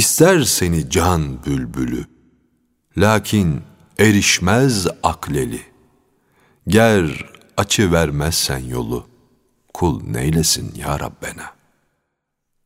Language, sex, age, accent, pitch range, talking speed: Turkish, male, 60-79, native, 80-105 Hz, 70 wpm